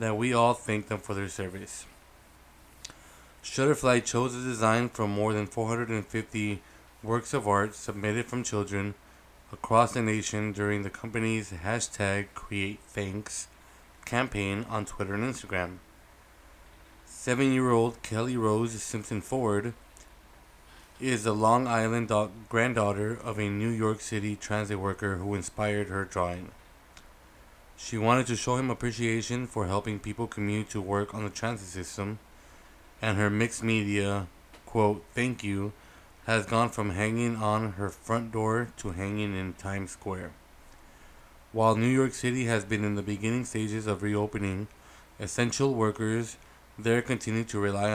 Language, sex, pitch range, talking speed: English, male, 100-115 Hz, 140 wpm